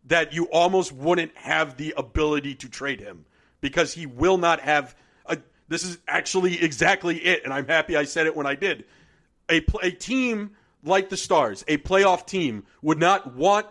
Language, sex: English, male